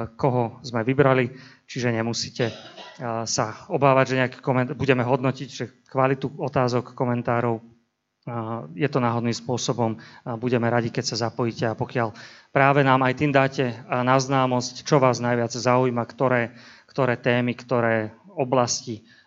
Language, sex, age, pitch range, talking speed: Slovak, male, 30-49, 120-135 Hz, 130 wpm